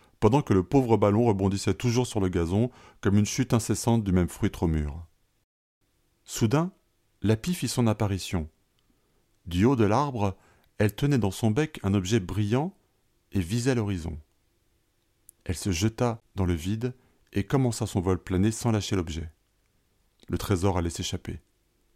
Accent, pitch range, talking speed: French, 95-120 Hz, 160 wpm